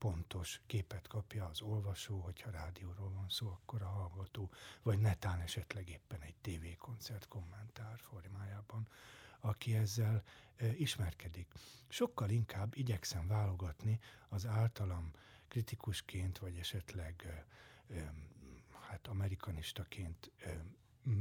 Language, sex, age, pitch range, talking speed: Hungarian, male, 60-79, 95-115 Hz, 110 wpm